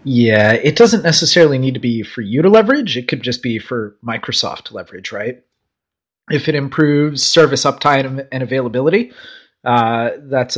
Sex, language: male, English